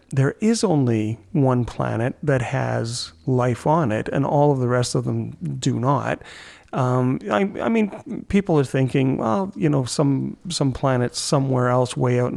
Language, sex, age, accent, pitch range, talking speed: English, male, 40-59, American, 125-155 Hz, 175 wpm